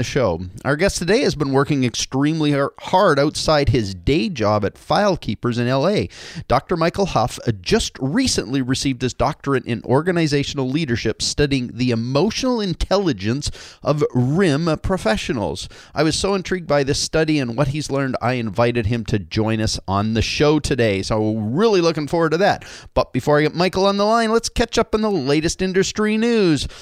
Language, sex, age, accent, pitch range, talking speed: English, male, 30-49, American, 115-165 Hz, 180 wpm